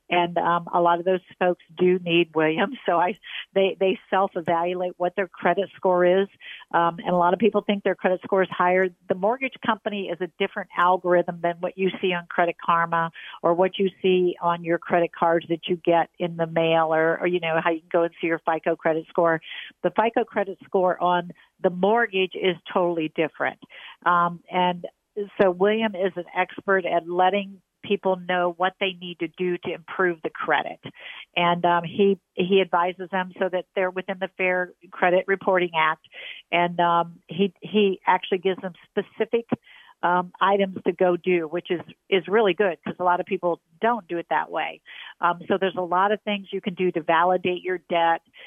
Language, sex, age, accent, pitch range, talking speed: English, female, 50-69, American, 170-190 Hz, 200 wpm